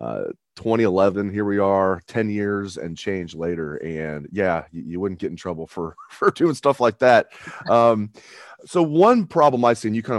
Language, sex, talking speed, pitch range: English, male, 195 wpm, 95-115 Hz